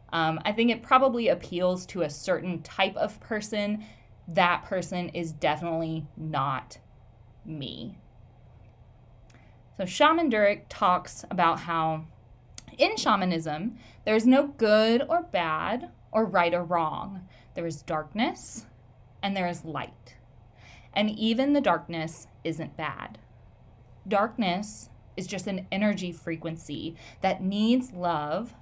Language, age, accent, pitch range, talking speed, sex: English, 20-39, American, 150-210 Hz, 120 wpm, female